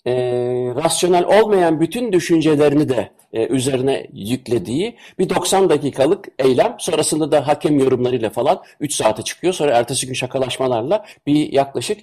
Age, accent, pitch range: 60-79, native, 125-180 Hz